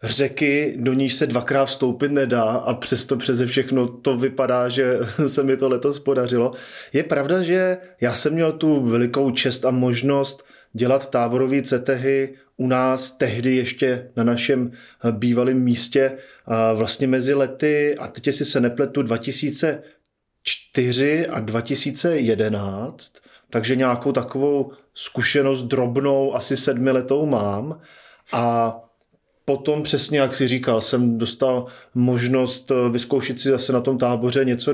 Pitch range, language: 125-140 Hz, Czech